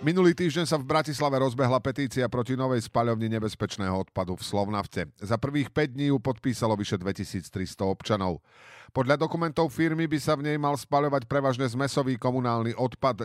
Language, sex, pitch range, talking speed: Slovak, male, 105-130 Hz, 165 wpm